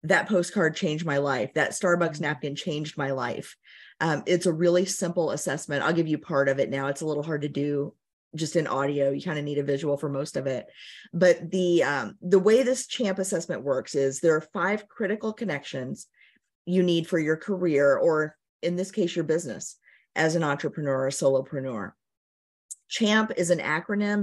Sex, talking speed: female, 195 wpm